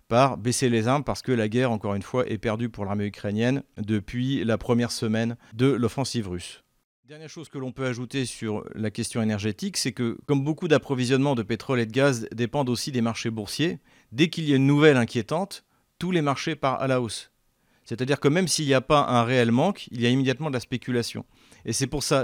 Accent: French